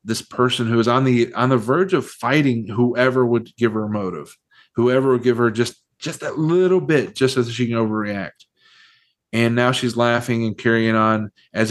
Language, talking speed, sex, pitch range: English, 195 wpm, male, 110-130 Hz